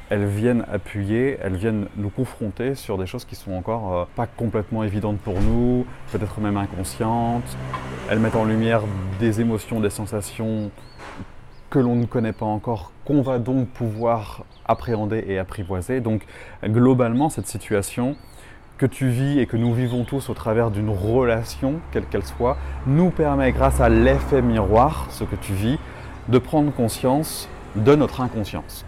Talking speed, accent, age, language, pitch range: 160 wpm, French, 30-49, French, 105-125 Hz